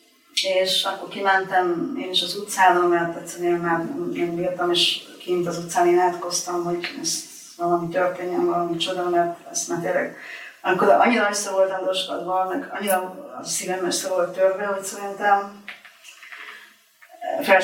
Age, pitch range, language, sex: 30-49, 180-195 Hz, Hungarian, female